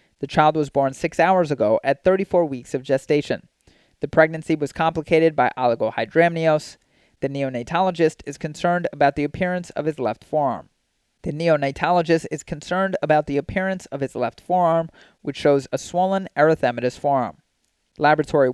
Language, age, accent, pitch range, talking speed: English, 30-49, American, 135-165 Hz, 150 wpm